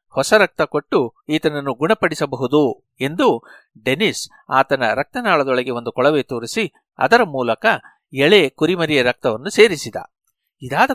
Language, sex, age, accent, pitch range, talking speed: Kannada, male, 60-79, native, 130-175 Hz, 105 wpm